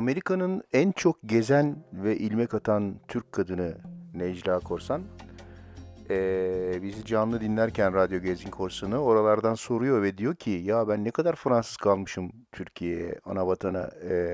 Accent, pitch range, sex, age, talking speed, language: native, 90-115 Hz, male, 50-69, 140 wpm, Turkish